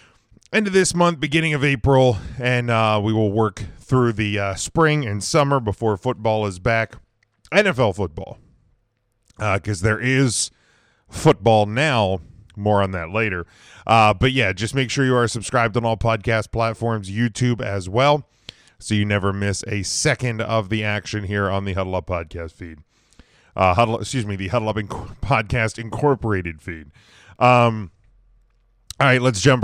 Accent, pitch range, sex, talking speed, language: American, 105-130 Hz, male, 165 wpm, English